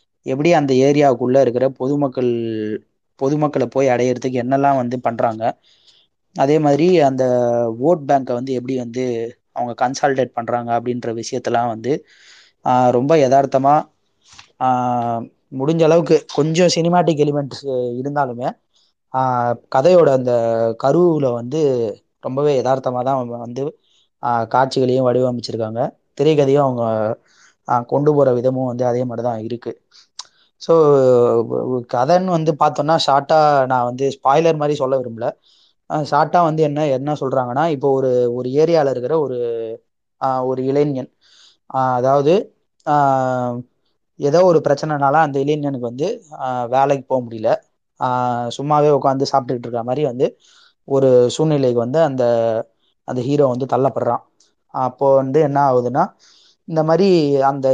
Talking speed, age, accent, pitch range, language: 110 wpm, 20-39, native, 125-145 Hz, Tamil